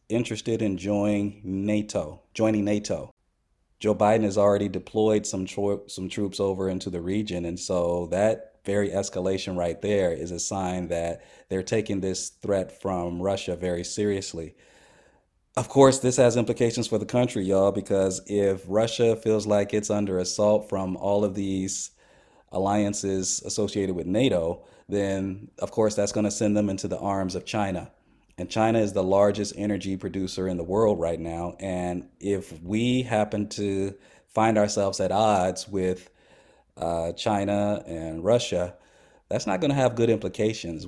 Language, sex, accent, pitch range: Japanese, male, American, 95-110 Hz